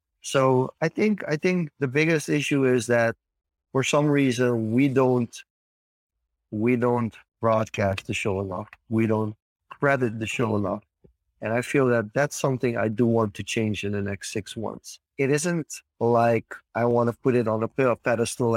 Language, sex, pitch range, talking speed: English, male, 105-125 Hz, 175 wpm